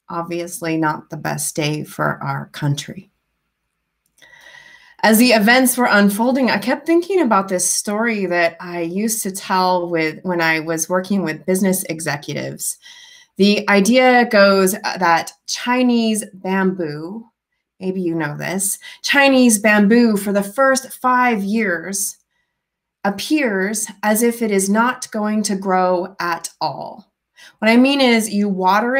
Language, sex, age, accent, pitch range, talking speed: English, female, 30-49, American, 185-255 Hz, 135 wpm